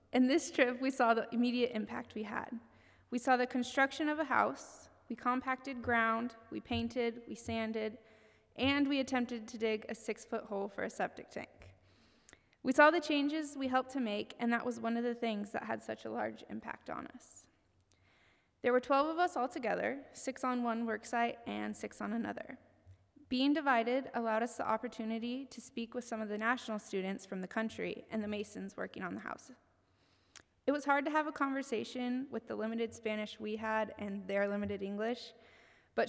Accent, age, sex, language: American, 20-39, female, English